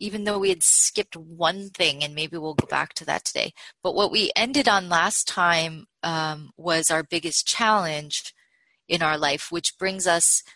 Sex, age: female, 20-39